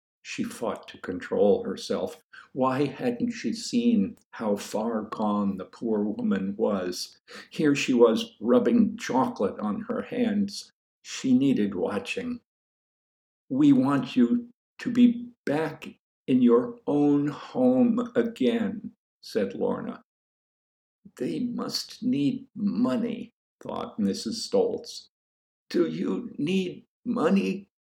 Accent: American